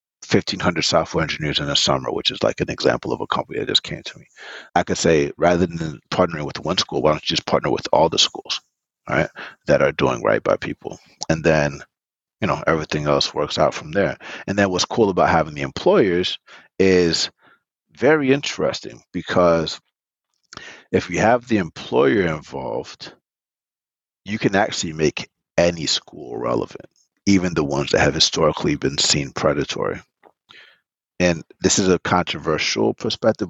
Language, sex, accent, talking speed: English, male, American, 170 wpm